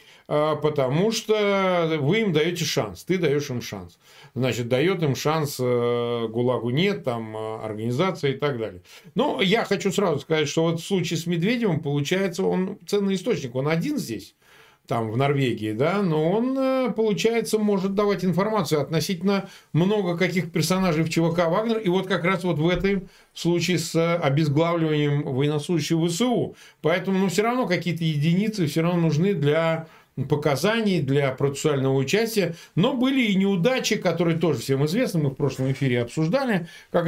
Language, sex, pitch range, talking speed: Russian, male, 135-195 Hz, 155 wpm